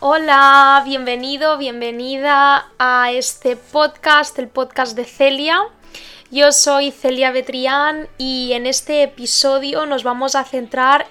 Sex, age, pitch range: female, 10-29, 245-275 Hz